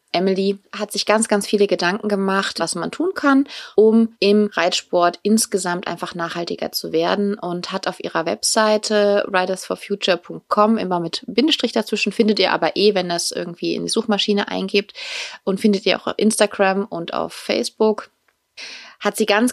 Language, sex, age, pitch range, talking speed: German, female, 20-39, 175-215 Hz, 165 wpm